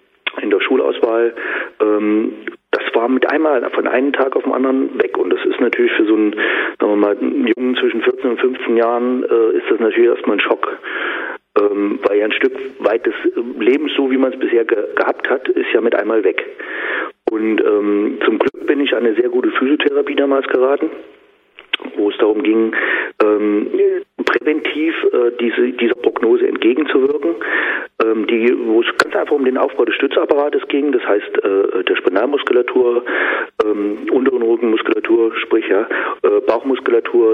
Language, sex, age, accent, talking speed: German, male, 40-59, German, 150 wpm